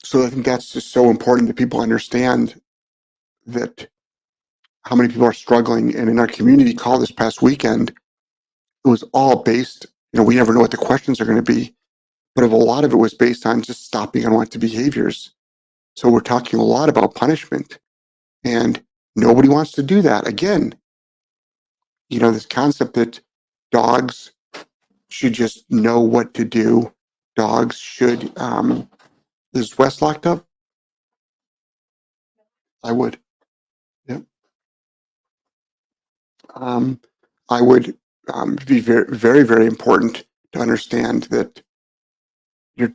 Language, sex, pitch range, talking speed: English, male, 115-135 Hz, 140 wpm